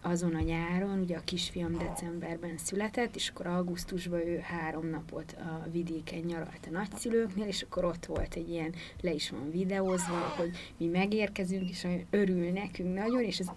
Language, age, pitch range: Hungarian, 30-49, 175-210 Hz